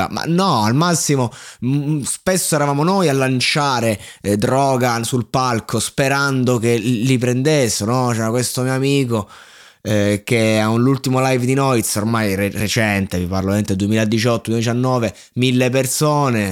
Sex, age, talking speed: male, 20-39, 140 wpm